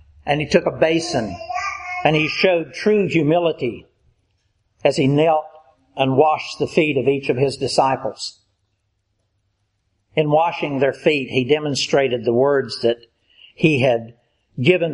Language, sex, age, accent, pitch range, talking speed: English, male, 60-79, American, 115-160 Hz, 135 wpm